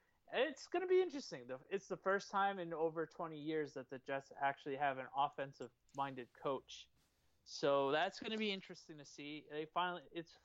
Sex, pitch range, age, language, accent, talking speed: male, 130-160 Hz, 20-39, English, American, 185 wpm